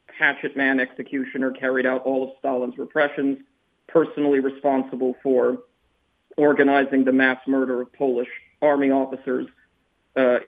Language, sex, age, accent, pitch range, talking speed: English, male, 40-59, American, 130-145 Hz, 120 wpm